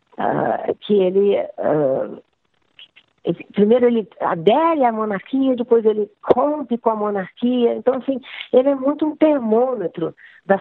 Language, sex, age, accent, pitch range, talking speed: Portuguese, female, 40-59, Brazilian, 170-245 Hz, 135 wpm